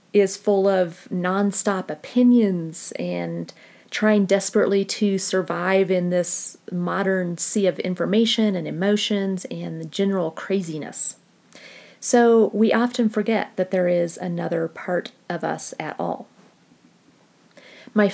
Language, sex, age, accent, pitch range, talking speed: English, female, 40-59, American, 180-220 Hz, 120 wpm